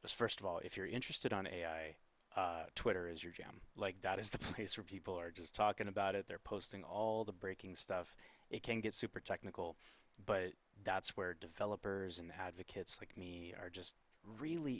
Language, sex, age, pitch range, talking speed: English, male, 20-39, 85-105 Hz, 190 wpm